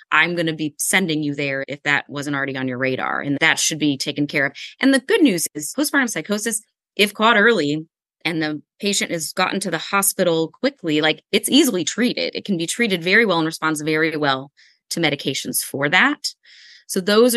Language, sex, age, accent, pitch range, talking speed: English, female, 20-39, American, 145-180 Hz, 205 wpm